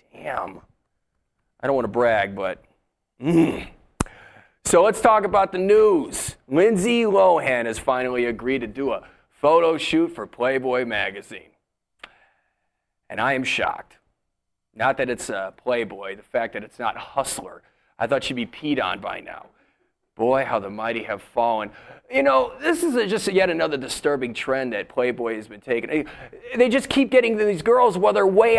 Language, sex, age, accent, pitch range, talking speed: English, male, 30-49, American, 130-220 Hz, 170 wpm